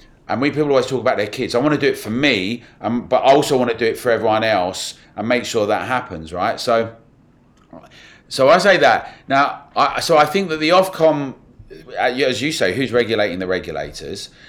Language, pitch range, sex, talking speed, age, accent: English, 100-160 Hz, male, 220 wpm, 30-49, British